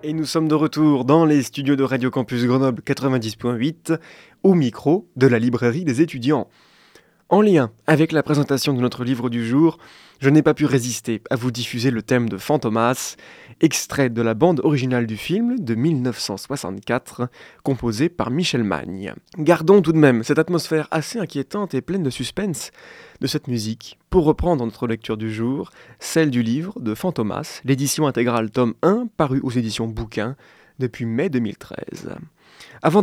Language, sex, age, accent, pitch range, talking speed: French, male, 20-39, French, 120-160 Hz, 170 wpm